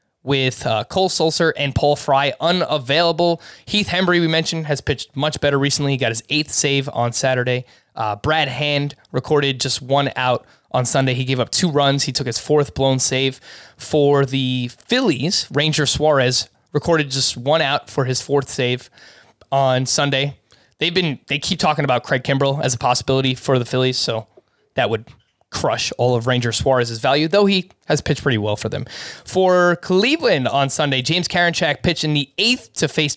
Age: 20-39